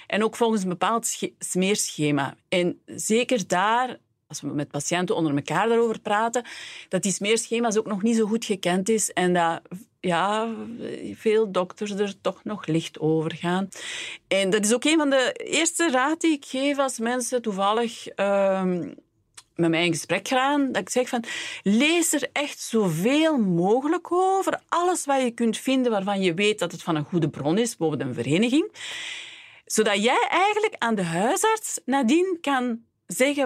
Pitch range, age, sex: 180-255 Hz, 40-59, female